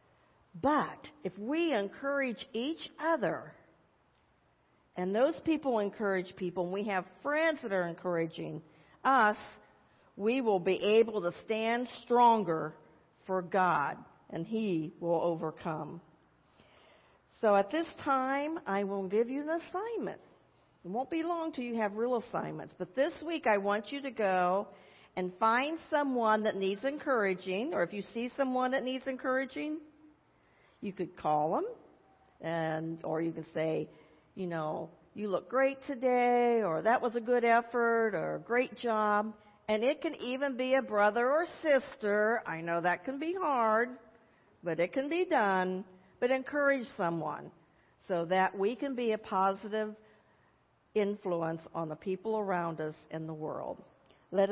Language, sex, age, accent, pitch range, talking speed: English, female, 50-69, American, 180-260 Hz, 150 wpm